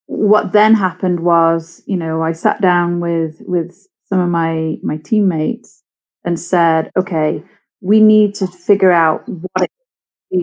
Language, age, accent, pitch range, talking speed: English, 30-49, British, 170-195 Hz, 150 wpm